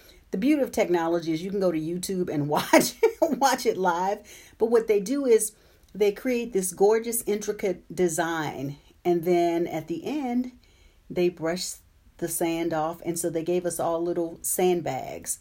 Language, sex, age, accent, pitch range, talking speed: English, female, 40-59, American, 155-195 Hz, 170 wpm